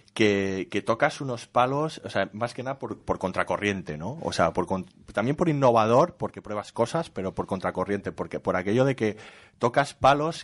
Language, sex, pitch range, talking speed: Spanish, male, 90-115 Hz, 195 wpm